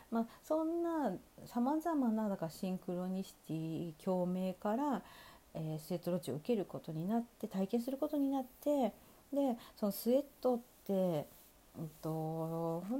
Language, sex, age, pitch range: Japanese, female, 40-59, 170-245 Hz